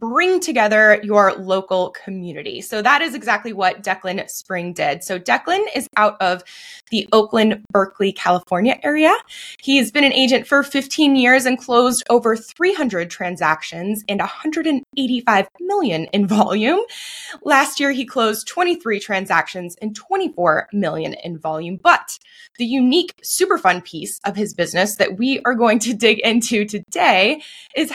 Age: 20-39